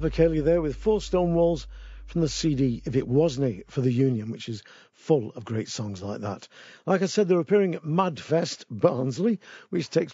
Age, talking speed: 50-69, 200 wpm